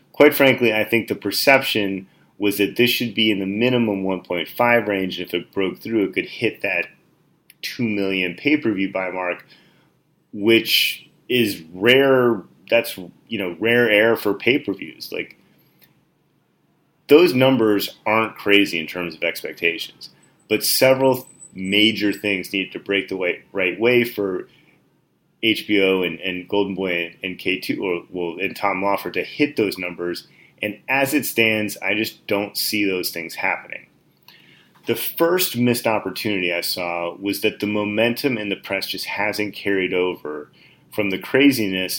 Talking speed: 155 wpm